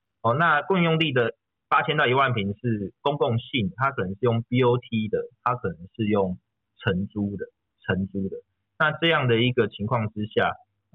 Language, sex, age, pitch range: Chinese, male, 30-49, 100-130 Hz